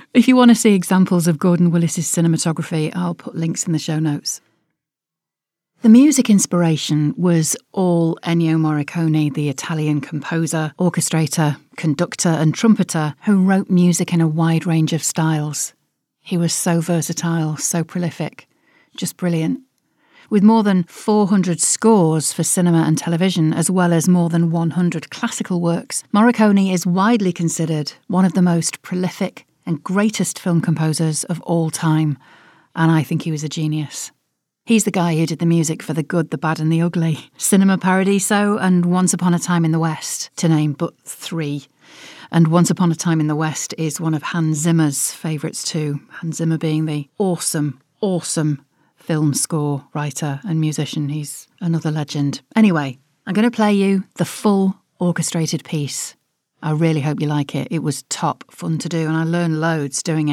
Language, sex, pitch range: English, female, 155-180 Hz